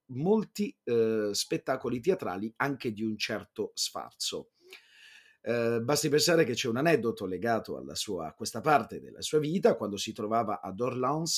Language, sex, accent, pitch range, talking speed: Italian, male, native, 110-190 Hz, 155 wpm